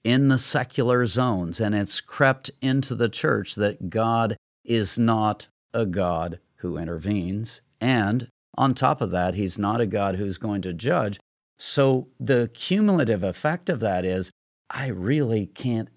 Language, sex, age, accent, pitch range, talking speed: English, male, 50-69, American, 105-155 Hz, 155 wpm